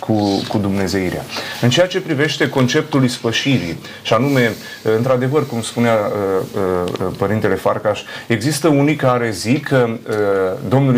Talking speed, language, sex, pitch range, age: 120 wpm, Romanian, male, 115-140 Hz, 30-49